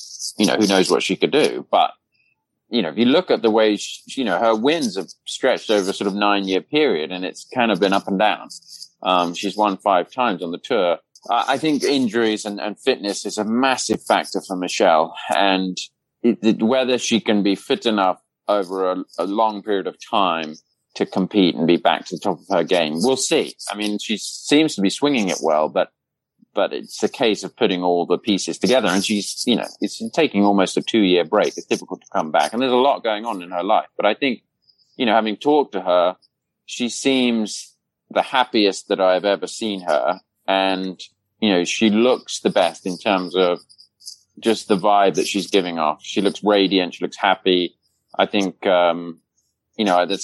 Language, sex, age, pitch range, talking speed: English, male, 30-49, 95-110 Hz, 215 wpm